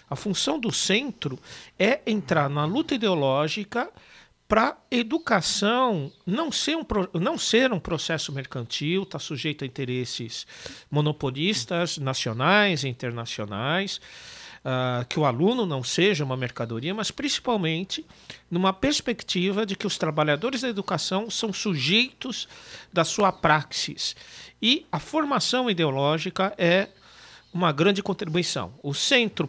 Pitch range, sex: 140-205 Hz, male